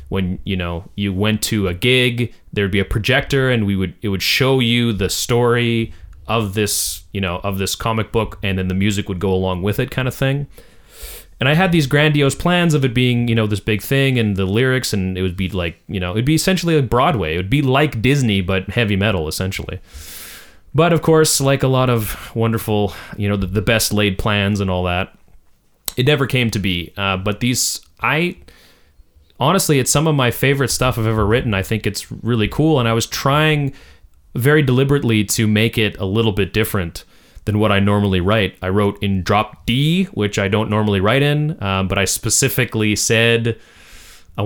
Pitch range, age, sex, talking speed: 95-125 Hz, 30-49, male, 210 wpm